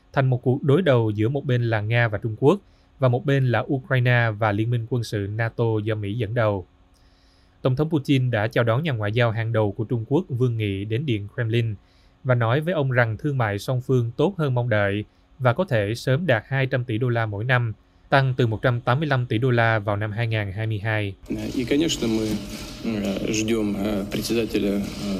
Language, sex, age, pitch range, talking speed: Vietnamese, male, 20-39, 105-130 Hz, 190 wpm